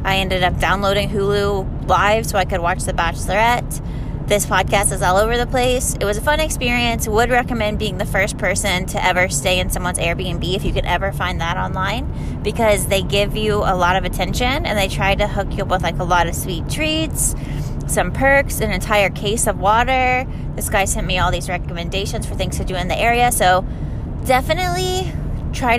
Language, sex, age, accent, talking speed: English, female, 20-39, American, 205 wpm